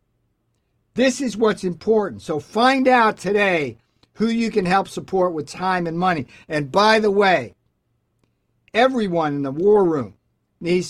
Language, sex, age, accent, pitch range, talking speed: English, male, 60-79, American, 165-210 Hz, 150 wpm